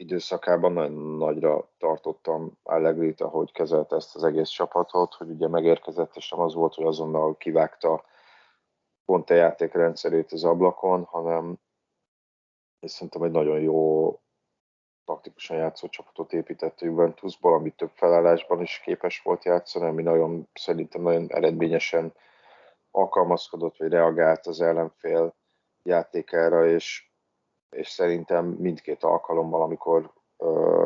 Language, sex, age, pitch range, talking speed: Hungarian, male, 30-49, 80-90 Hz, 120 wpm